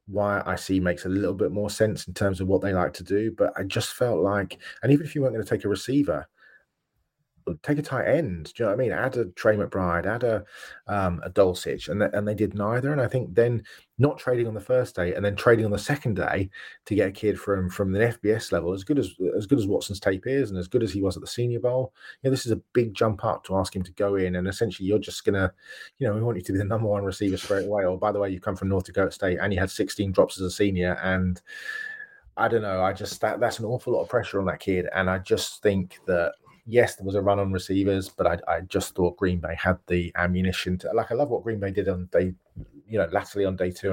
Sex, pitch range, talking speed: male, 95-115 Hz, 285 wpm